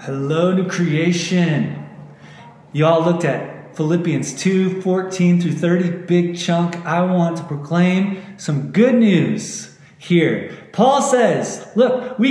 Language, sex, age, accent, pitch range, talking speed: English, male, 30-49, American, 160-210 Hz, 120 wpm